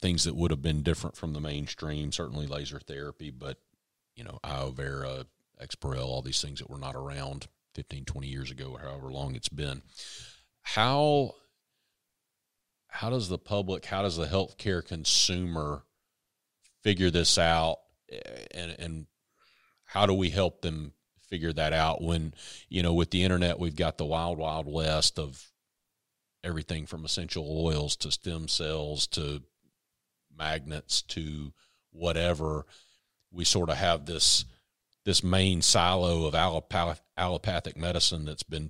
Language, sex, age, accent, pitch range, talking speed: English, male, 40-59, American, 75-90 Hz, 145 wpm